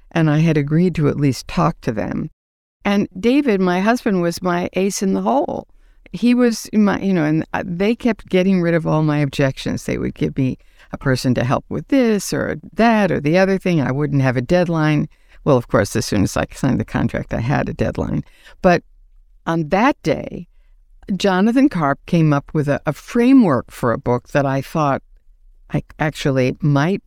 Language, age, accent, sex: English, 60-79, American, female